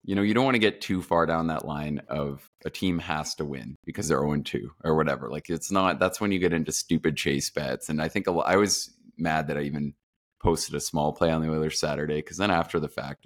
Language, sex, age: English, male, 20-39